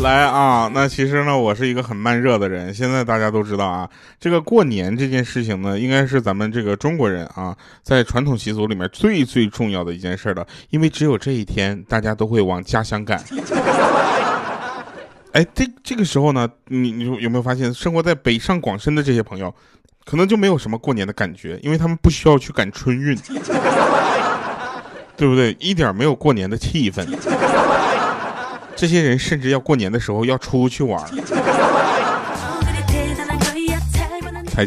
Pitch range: 100-140 Hz